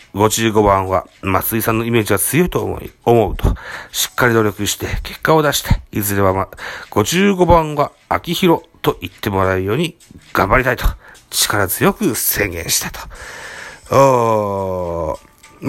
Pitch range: 100-170 Hz